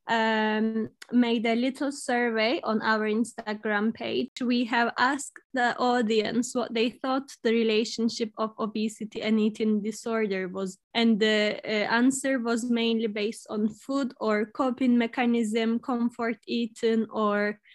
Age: 10-29